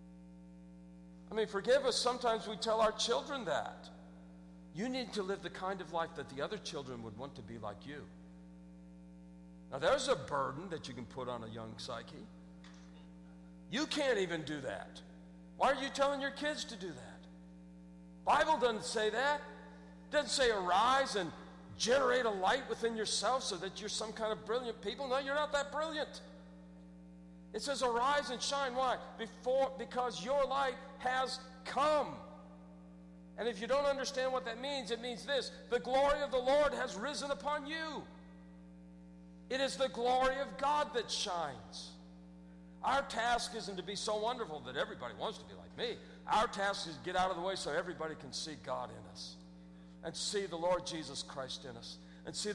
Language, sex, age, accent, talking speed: English, male, 50-69, American, 185 wpm